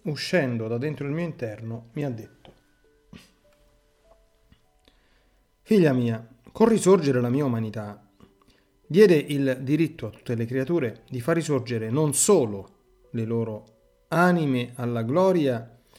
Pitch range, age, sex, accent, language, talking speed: 115-155 Hz, 40-59, male, native, Italian, 125 wpm